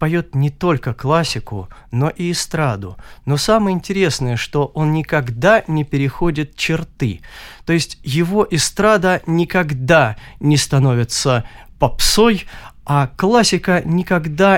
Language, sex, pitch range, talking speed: Russian, male, 125-170 Hz, 110 wpm